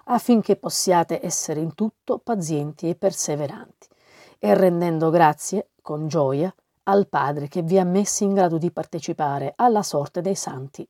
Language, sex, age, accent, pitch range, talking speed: Italian, female, 40-59, native, 165-200 Hz, 150 wpm